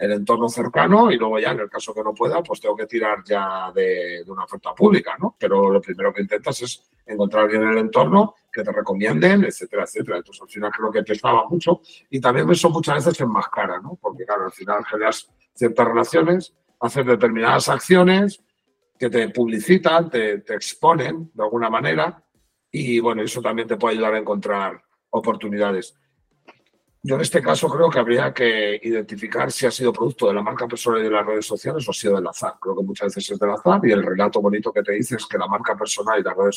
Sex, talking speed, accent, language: male, 220 wpm, Spanish, Spanish